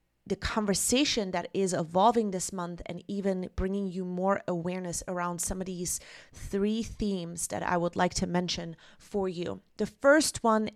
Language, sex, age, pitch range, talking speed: English, female, 30-49, 180-210 Hz, 165 wpm